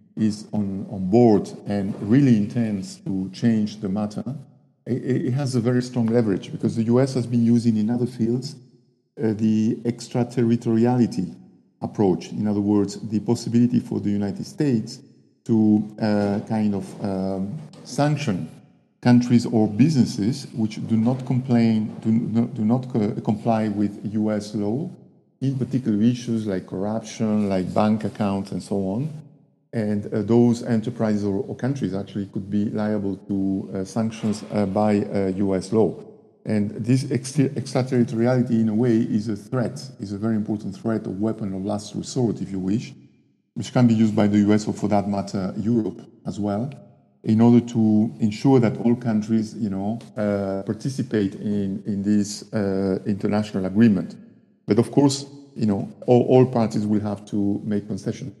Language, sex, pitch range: English, male, 105-120 Hz